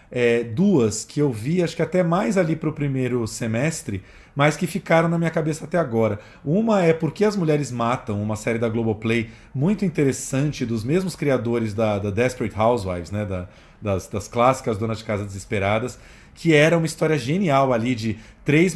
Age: 40-59